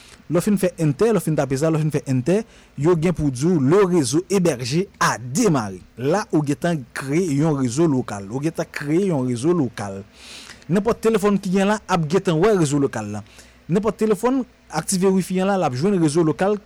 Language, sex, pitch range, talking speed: French, male, 135-185 Hz, 160 wpm